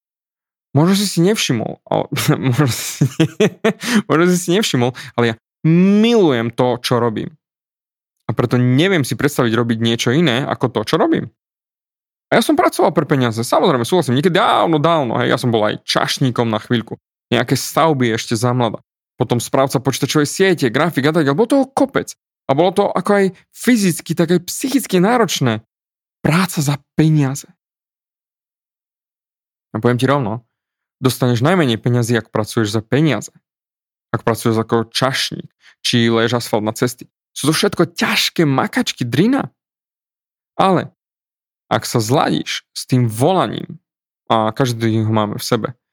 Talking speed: 140 wpm